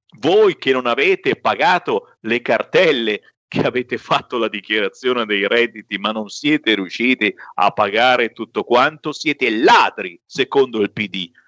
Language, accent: Italian, native